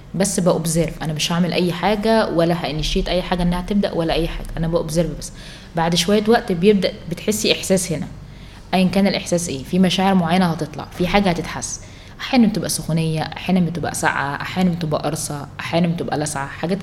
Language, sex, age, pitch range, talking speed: Arabic, female, 20-39, 160-195 Hz, 180 wpm